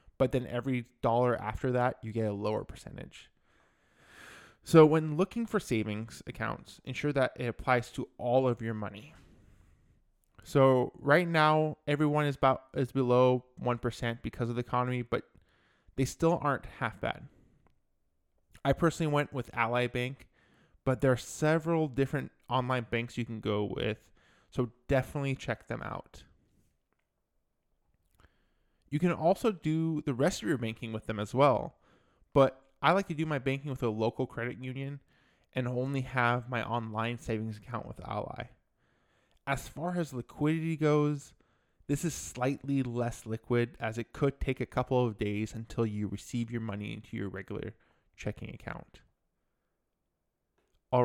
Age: 20-39